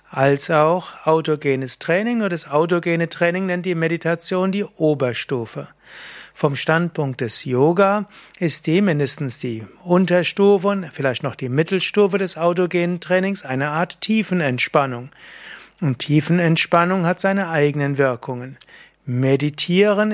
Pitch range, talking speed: 140-180 Hz, 120 wpm